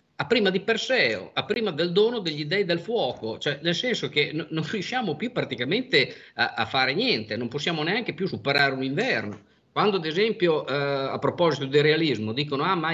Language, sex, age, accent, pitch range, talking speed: Italian, male, 50-69, native, 120-175 Hz, 190 wpm